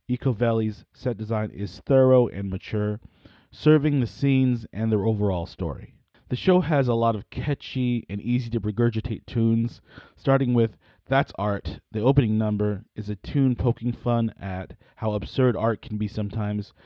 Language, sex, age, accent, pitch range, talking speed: English, male, 30-49, American, 105-130 Hz, 160 wpm